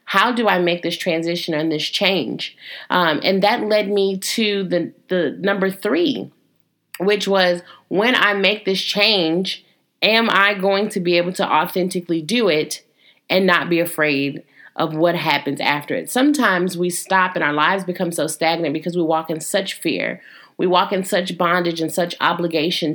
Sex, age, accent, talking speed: female, 30-49, American, 180 wpm